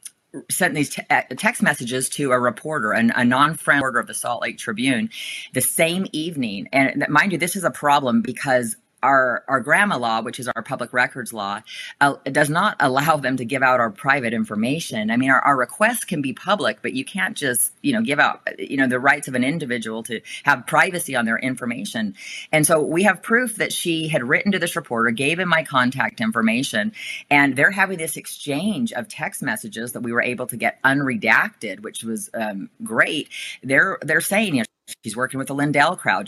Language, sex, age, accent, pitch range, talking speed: English, female, 30-49, American, 130-185 Hz, 205 wpm